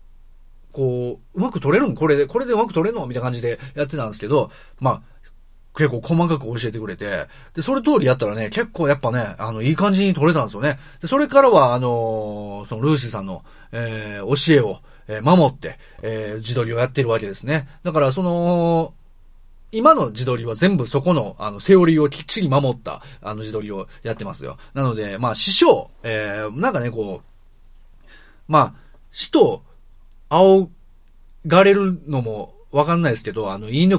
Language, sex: Japanese, male